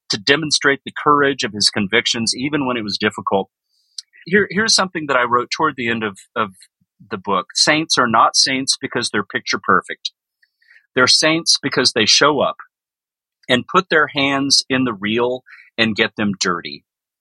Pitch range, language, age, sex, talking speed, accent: 115-150 Hz, English, 40-59, male, 175 wpm, American